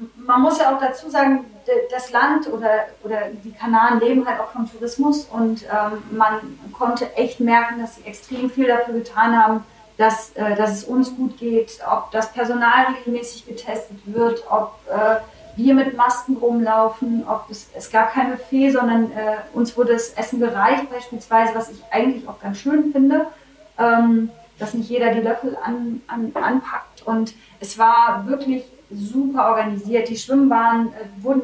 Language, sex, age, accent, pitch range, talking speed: German, female, 30-49, German, 220-255 Hz, 165 wpm